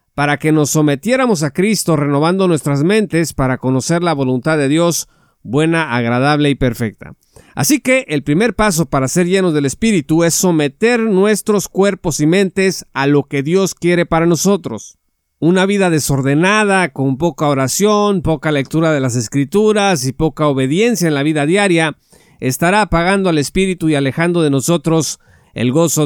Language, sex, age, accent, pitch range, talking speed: Spanish, male, 50-69, Mexican, 145-195 Hz, 160 wpm